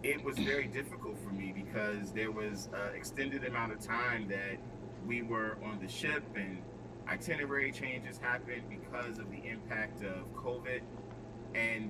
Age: 30-49